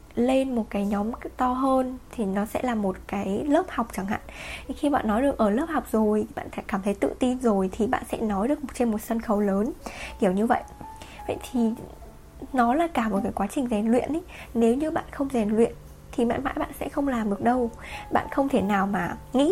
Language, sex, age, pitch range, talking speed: Vietnamese, female, 10-29, 205-260 Hz, 235 wpm